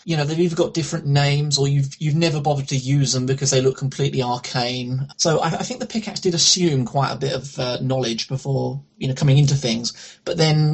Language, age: English, 20-39